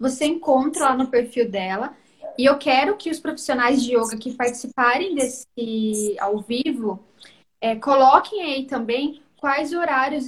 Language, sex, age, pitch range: Portuguese, female, 10-29, 240-290 Hz